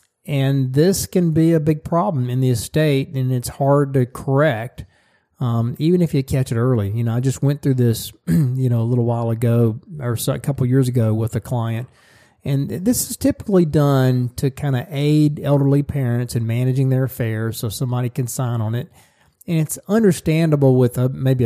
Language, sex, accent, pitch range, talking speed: English, male, American, 120-140 Hz, 195 wpm